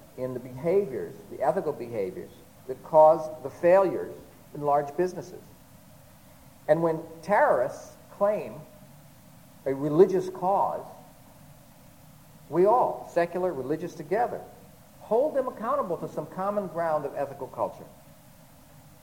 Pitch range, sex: 145-185 Hz, male